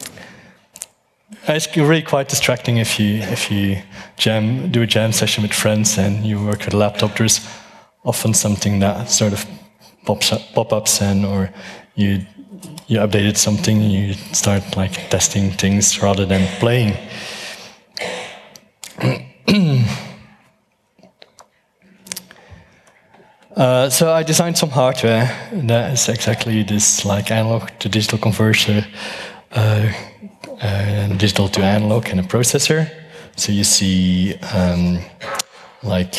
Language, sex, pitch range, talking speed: English, male, 100-125 Hz, 125 wpm